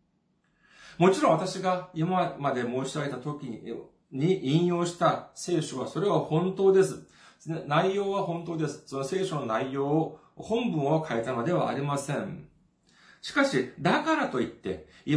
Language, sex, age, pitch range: Japanese, male, 40-59, 125-180 Hz